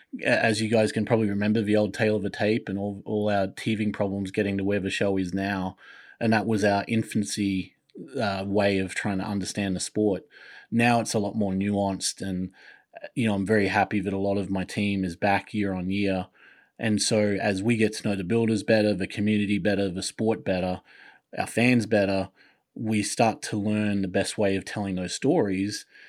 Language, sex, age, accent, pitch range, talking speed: English, male, 30-49, Australian, 95-110 Hz, 210 wpm